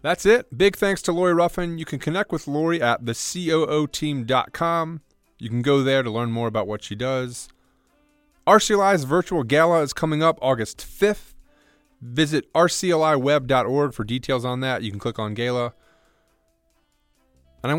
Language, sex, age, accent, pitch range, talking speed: English, male, 30-49, American, 95-135 Hz, 155 wpm